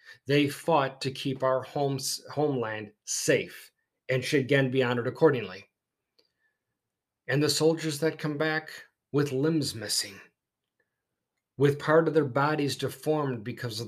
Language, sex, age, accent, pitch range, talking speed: English, male, 40-59, American, 120-145 Hz, 130 wpm